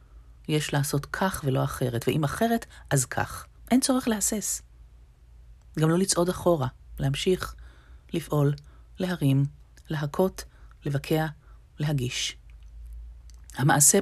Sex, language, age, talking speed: female, Hebrew, 30-49, 100 wpm